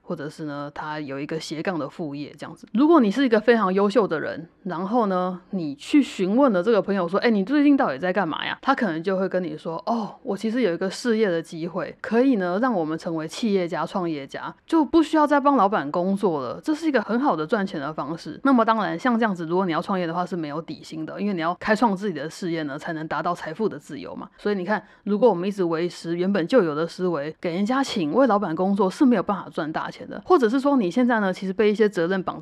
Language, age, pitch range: Chinese, 20-39, 170-230 Hz